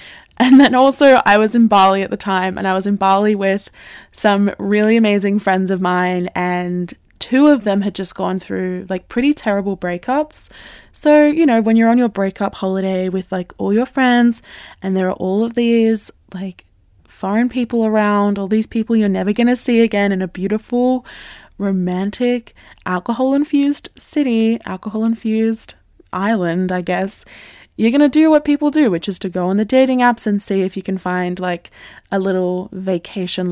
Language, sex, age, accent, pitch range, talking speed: English, female, 20-39, Australian, 185-235 Hz, 185 wpm